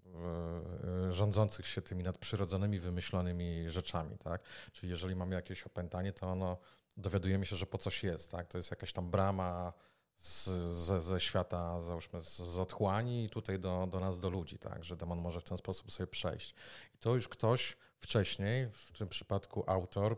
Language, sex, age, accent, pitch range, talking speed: Polish, male, 30-49, native, 90-110 Hz, 170 wpm